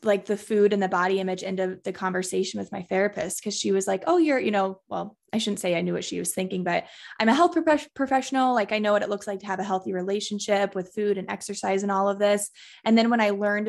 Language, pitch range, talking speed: English, 195-230 Hz, 270 wpm